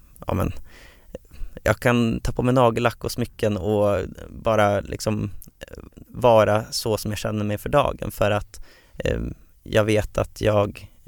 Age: 30-49